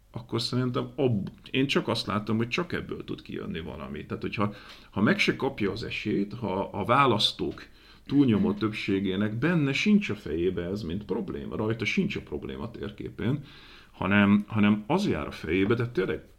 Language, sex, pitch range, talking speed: Hungarian, male, 90-120 Hz, 160 wpm